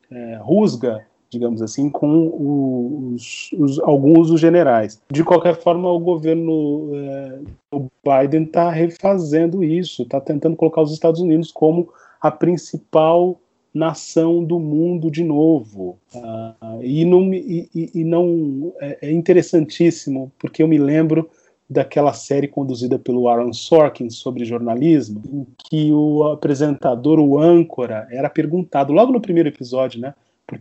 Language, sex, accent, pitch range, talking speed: Portuguese, male, Brazilian, 125-165 Hz, 120 wpm